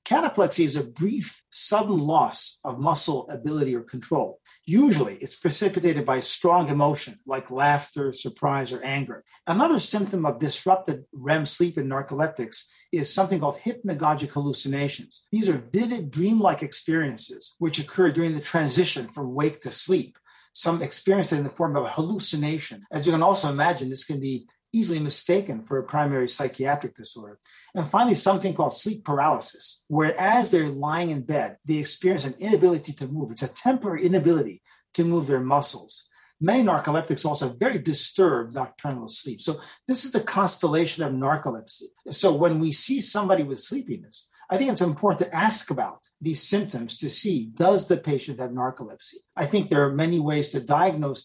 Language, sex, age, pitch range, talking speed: English, male, 50-69, 140-185 Hz, 170 wpm